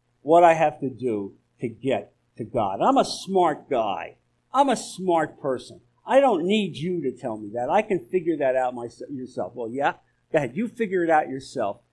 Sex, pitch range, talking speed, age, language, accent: male, 125-195 Hz, 205 wpm, 50-69, English, American